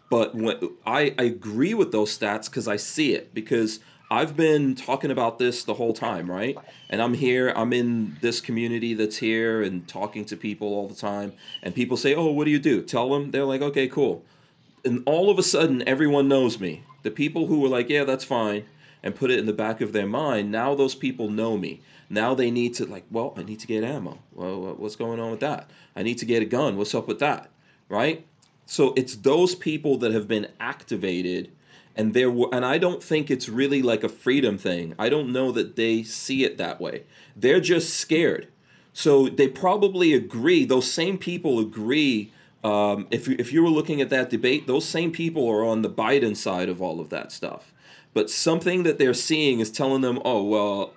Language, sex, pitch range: English, male, 110-140 Hz